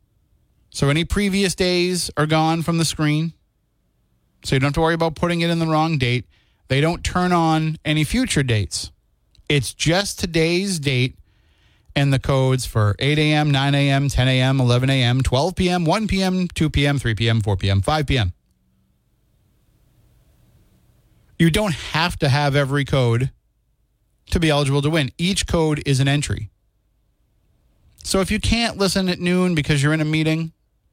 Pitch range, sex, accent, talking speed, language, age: 115-160 Hz, male, American, 165 wpm, English, 30-49